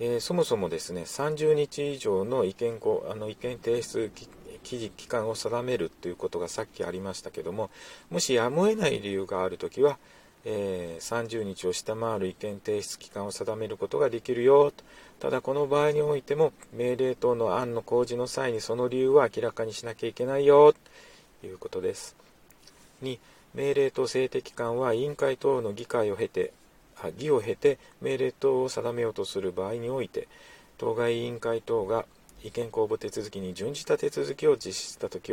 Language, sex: Japanese, male